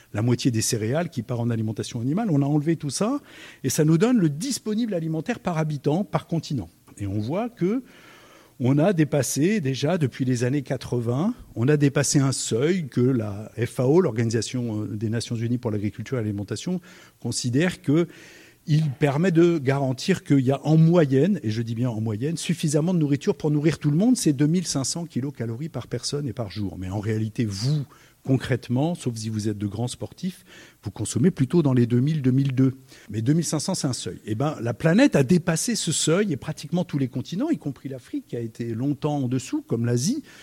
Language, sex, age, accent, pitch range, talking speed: French, male, 50-69, French, 120-170 Hz, 195 wpm